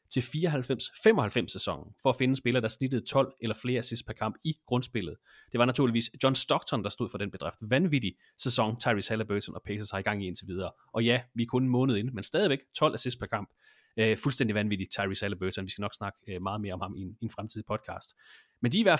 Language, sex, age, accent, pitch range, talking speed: Danish, male, 30-49, native, 110-155 Hz, 235 wpm